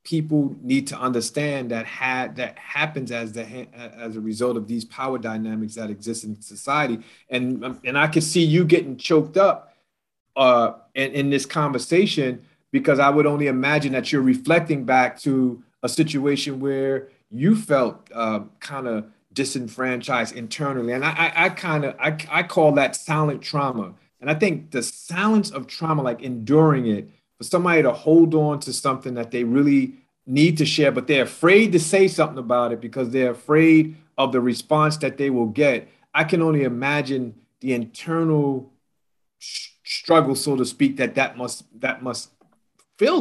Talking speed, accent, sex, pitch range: 175 wpm, American, male, 125-155 Hz